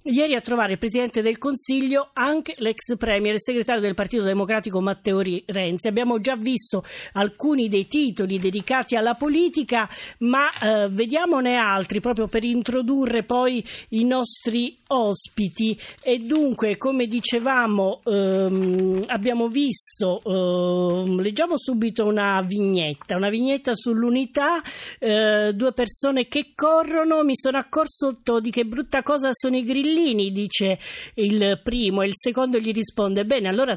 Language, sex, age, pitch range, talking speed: Italian, female, 40-59, 205-265 Hz, 135 wpm